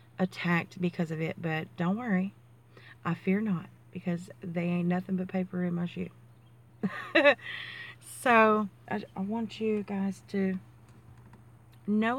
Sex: female